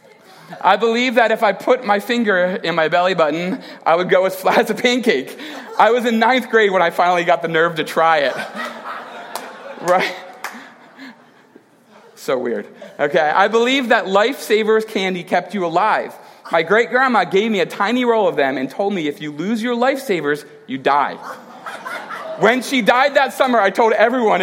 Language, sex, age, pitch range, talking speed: English, male, 40-59, 180-235 Hz, 180 wpm